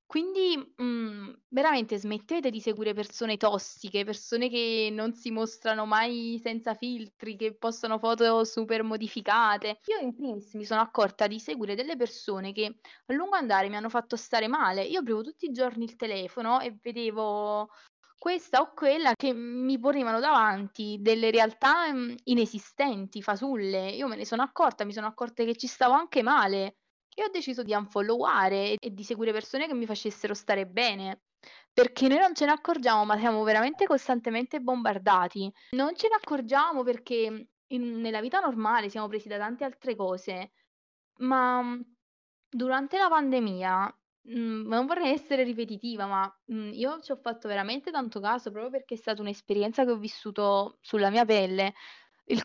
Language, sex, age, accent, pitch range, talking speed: Italian, female, 20-39, native, 210-255 Hz, 160 wpm